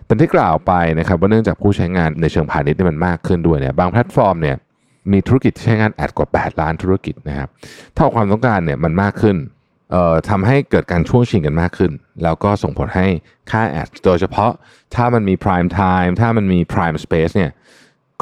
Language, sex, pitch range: Thai, male, 80-105 Hz